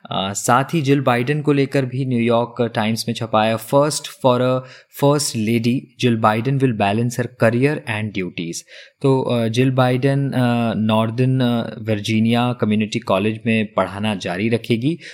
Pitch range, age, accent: 110-130 Hz, 20-39, native